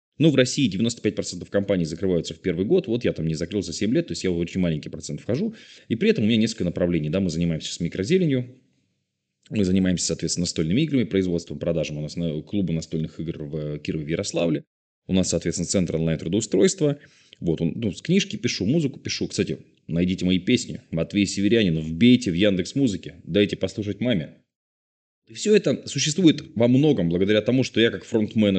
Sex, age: male, 20-39